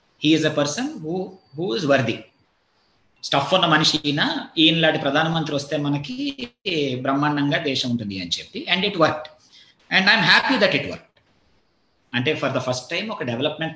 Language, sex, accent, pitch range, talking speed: Telugu, male, native, 140-185 Hz, 170 wpm